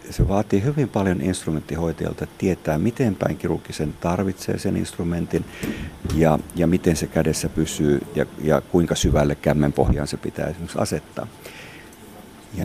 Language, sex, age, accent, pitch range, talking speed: Finnish, male, 50-69, native, 85-110 Hz, 130 wpm